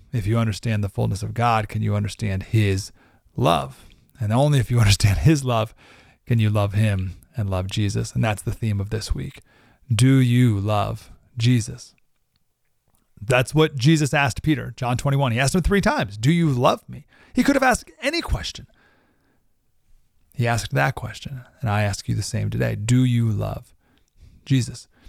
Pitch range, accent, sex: 110-140 Hz, American, male